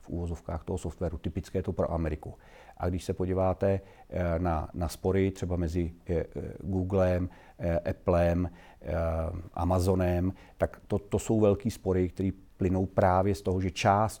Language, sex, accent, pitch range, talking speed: Czech, male, native, 85-95 Hz, 140 wpm